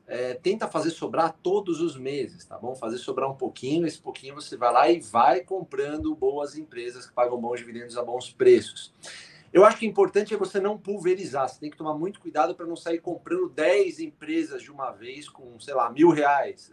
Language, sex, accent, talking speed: Portuguese, male, Brazilian, 210 wpm